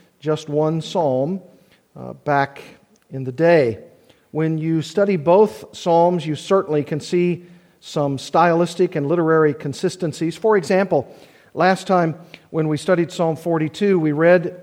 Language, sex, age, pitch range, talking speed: English, male, 50-69, 150-180 Hz, 135 wpm